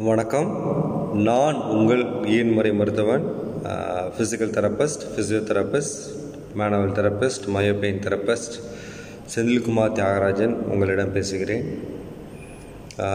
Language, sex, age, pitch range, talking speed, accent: Tamil, male, 20-39, 105-125 Hz, 80 wpm, native